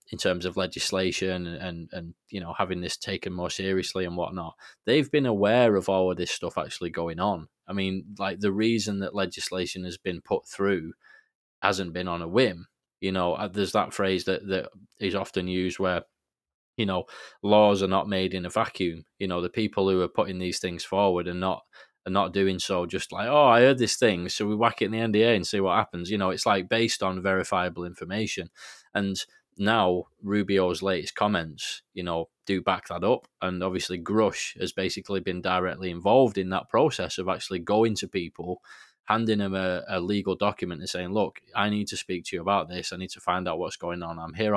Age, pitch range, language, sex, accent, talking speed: 20-39, 90-100 Hz, English, male, British, 215 wpm